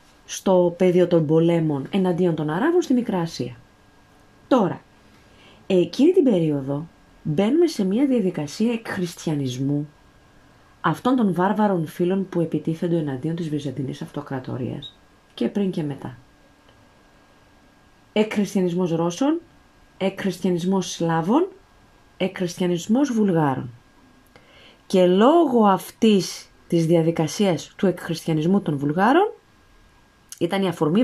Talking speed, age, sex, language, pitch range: 95 wpm, 30-49, female, Greek, 160-230 Hz